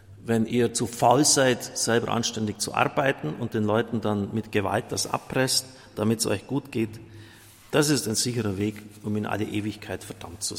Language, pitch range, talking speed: German, 105-125 Hz, 185 wpm